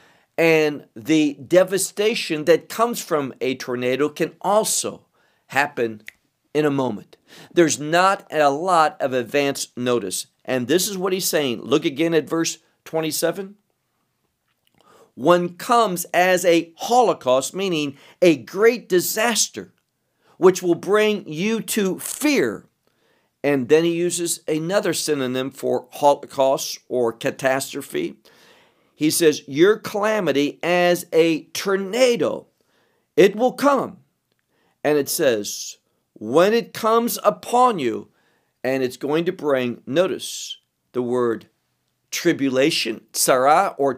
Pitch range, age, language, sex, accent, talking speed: 140-205 Hz, 50-69, English, male, American, 115 wpm